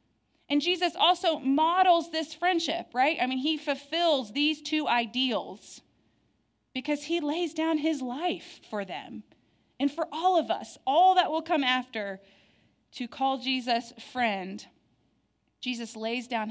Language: English